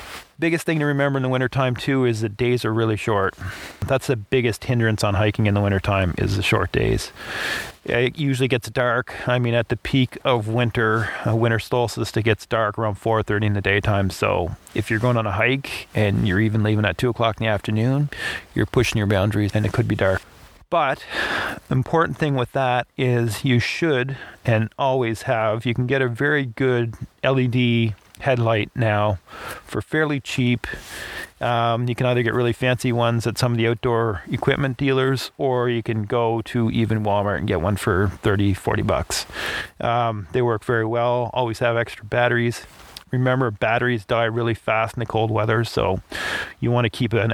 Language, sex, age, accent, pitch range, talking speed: English, male, 30-49, American, 110-125 Hz, 195 wpm